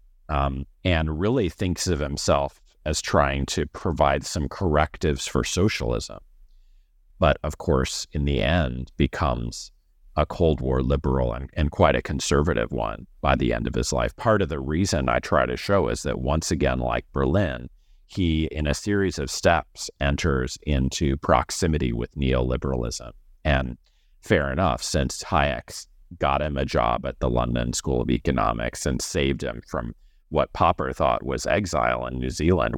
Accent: American